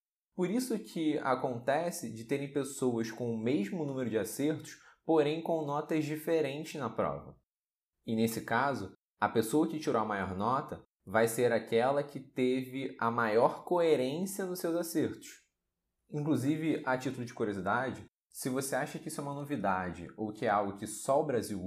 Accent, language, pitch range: Brazilian, Portuguese, 115-155 Hz